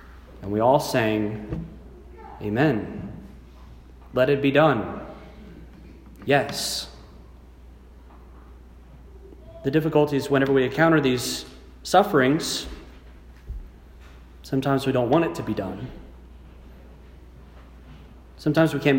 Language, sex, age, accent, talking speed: English, male, 30-49, American, 90 wpm